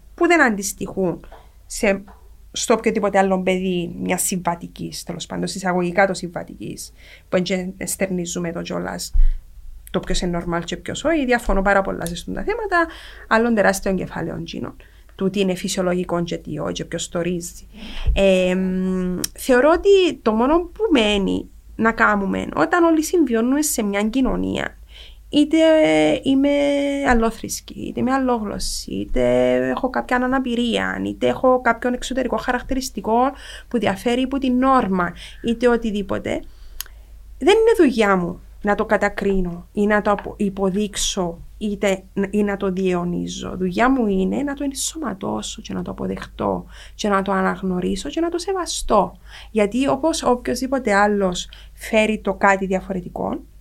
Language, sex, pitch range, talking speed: Greek, female, 175-250 Hz, 135 wpm